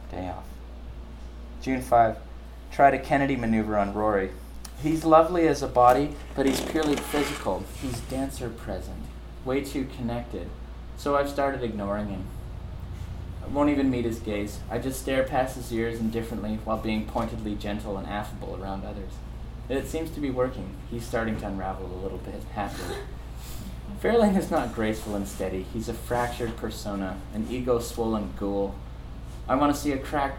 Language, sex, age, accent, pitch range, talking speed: English, male, 20-39, American, 90-120 Hz, 165 wpm